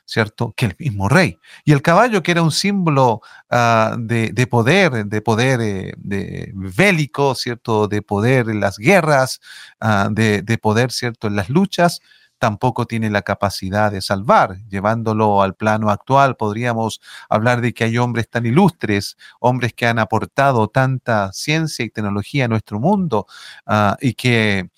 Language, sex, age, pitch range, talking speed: Spanish, male, 40-59, 105-130 Hz, 160 wpm